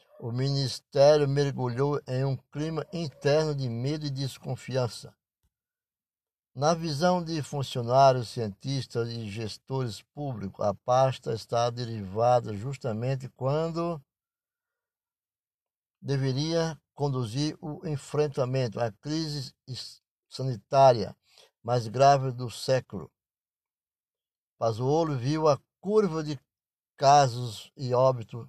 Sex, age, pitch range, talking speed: male, 60-79, 115-145 Hz, 95 wpm